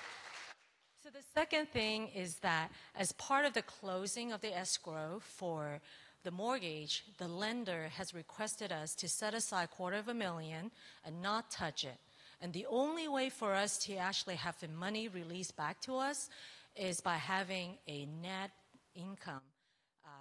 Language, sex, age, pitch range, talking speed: English, female, 40-59, 165-215 Hz, 160 wpm